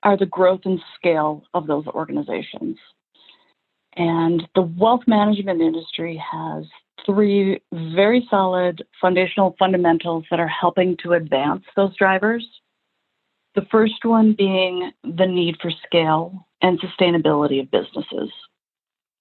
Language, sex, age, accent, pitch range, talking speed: English, female, 40-59, American, 170-205 Hz, 120 wpm